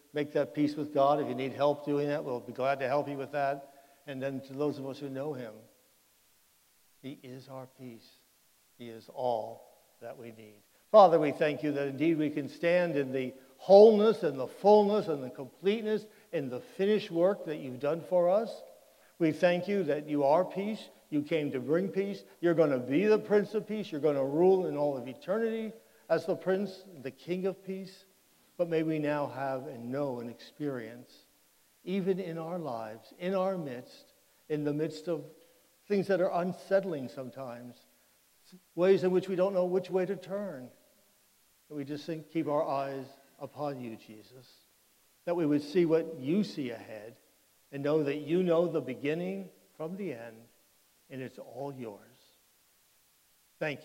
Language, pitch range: English, 135-180 Hz